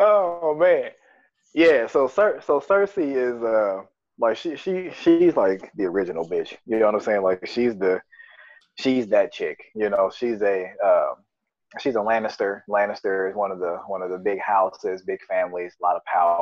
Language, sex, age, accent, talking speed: English, male, 20-39, American, 190 wpm